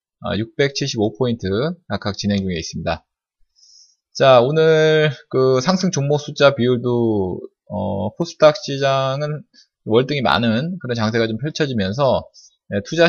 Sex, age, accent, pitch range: male, 20-39, native, 110-155 Hz